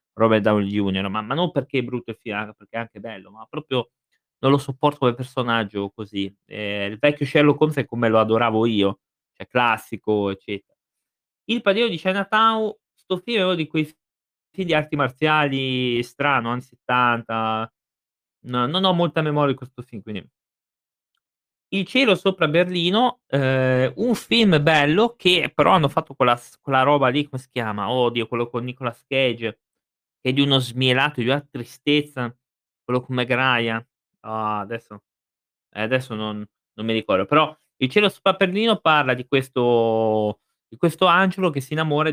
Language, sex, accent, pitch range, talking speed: Italian, male, native, 115-150 Hz, 165 wpm